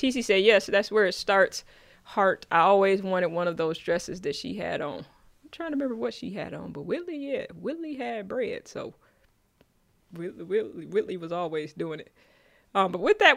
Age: 20-39